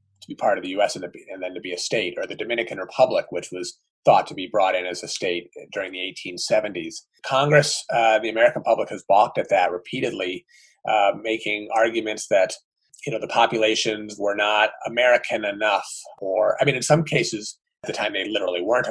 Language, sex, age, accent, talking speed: English, male, 30-49, American, 205 wpm